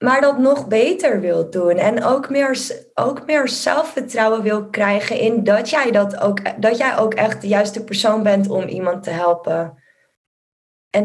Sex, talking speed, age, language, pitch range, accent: female, 175 wpm, 10-29, Dutch, 205-260 Hz, Dutch